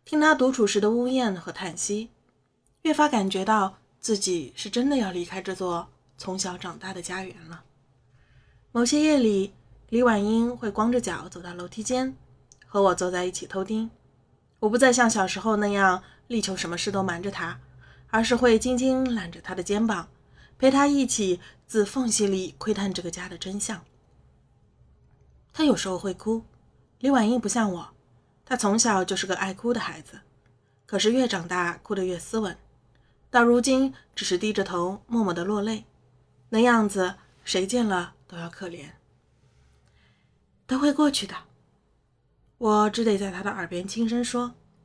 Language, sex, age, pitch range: Chinese, female, 20-39, 180-230 Hz